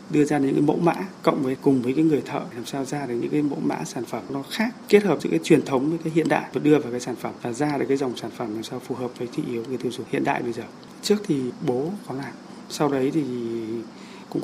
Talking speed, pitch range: 300 wpm, 120-150 Hz